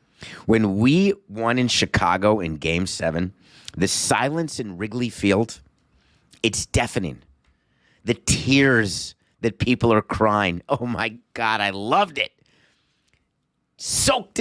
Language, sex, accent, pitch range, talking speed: English, male, American, 95-140 Hz, 115 wpm